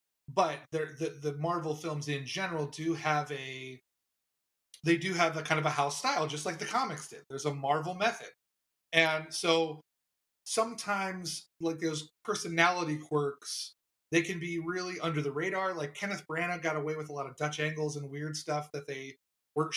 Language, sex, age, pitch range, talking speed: English, male, 30-49, 140-165 Hz, 180 wpm